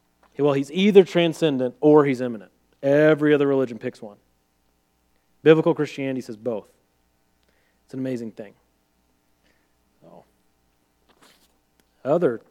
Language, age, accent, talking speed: English, 40-59, American, 105 wpm